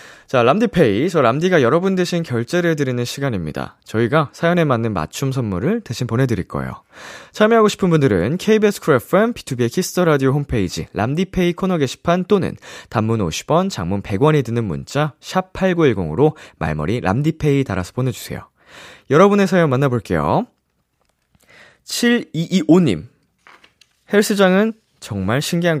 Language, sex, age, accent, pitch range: Korean, male, 20-39, native, 115-185 Hz